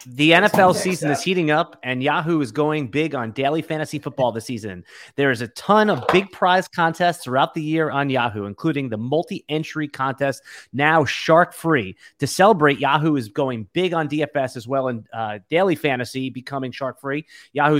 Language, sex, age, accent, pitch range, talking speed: English, male, 30-49, American, 130-160 Hz, 175 wpm